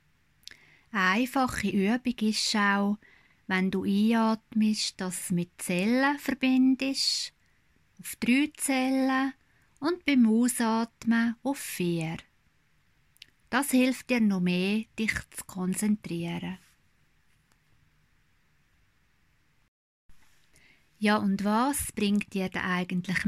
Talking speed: 90 wpm